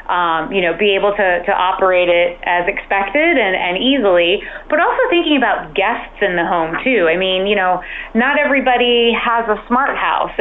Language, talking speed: English, 190 wpm